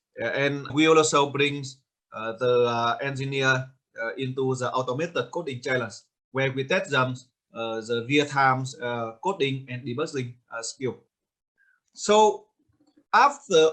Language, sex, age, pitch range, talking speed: English, male, 20-39, 130-160 Hz, 125 wpm